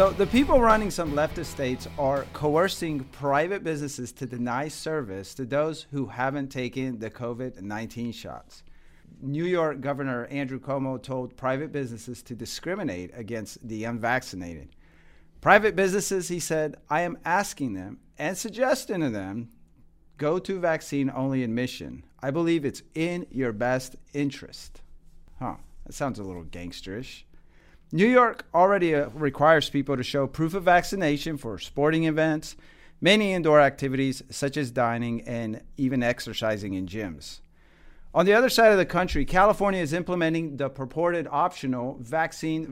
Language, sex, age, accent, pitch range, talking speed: English, male, 40-59, American, 125-170 Hz, 145 wpm